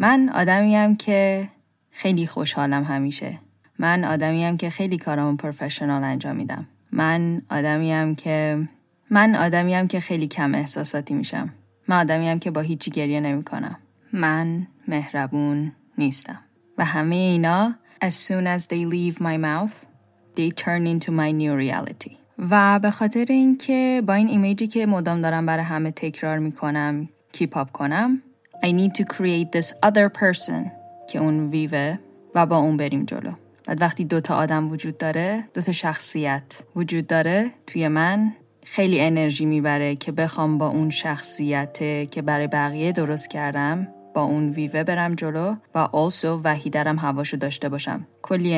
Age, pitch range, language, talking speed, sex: 10-29, 150-180 Hz, English, 150 wpm, female